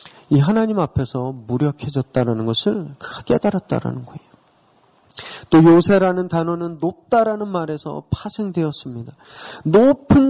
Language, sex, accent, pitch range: Korean, male, native, 145-210 Hz